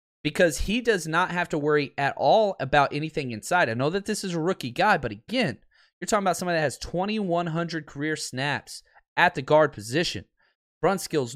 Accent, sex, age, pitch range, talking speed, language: American, male, 20-39, 115-170 Hz, 190 wpm, English